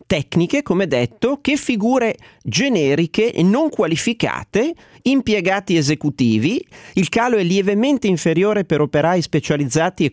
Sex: male